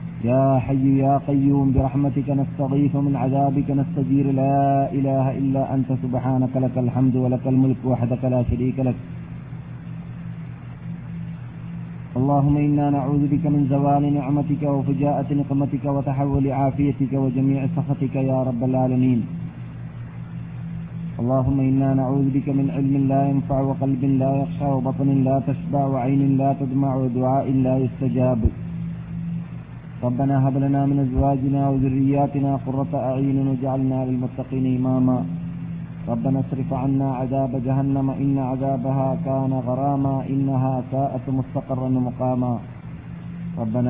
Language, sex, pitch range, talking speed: Malayalam, male, 130-140 Hz, 115 wpm